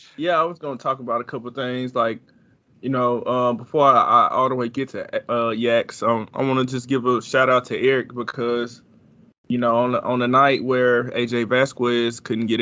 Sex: male